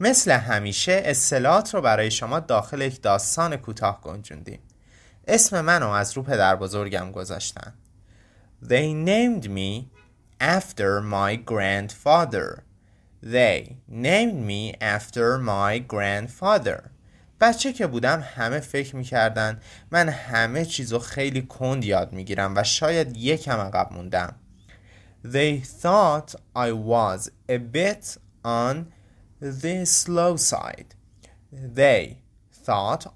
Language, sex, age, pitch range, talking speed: Persian, male, 20-39, 105-150 Hz, 110 wpm